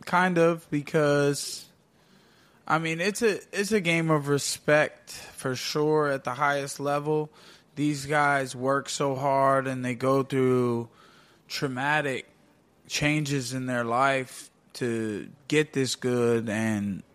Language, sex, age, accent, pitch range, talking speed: English, male, 20-39, American, 130-150 Hz, 130 wpm